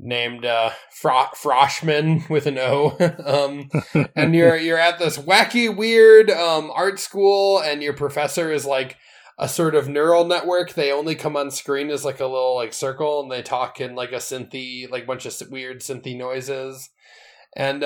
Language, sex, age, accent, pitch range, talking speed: English, male, 20-39, American, 130-175 Hz, 180 wpm